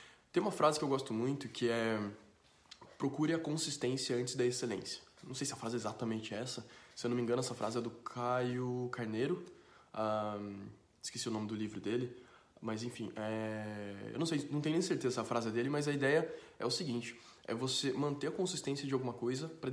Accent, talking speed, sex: Brazilian, 215 wpm, male